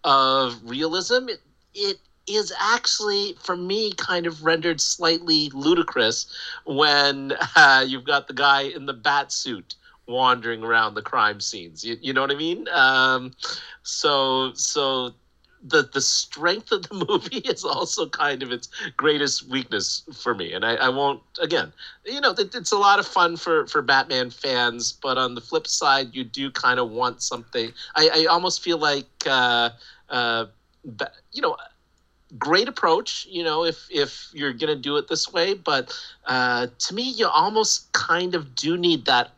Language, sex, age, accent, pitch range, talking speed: English, male, 40-59, American, 120-175 Hz, 170 wpm